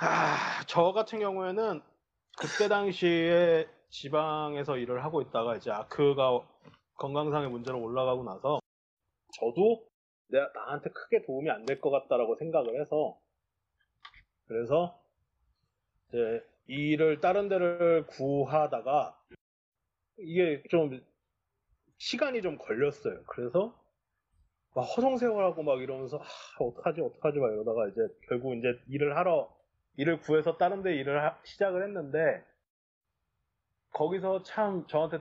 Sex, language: male, Korean